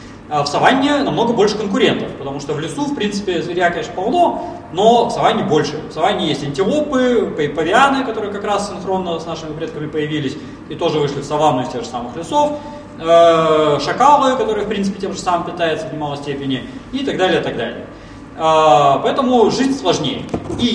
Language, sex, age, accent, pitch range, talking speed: Russian, male, 20-39, native, 155-235 Hz, 180 wpm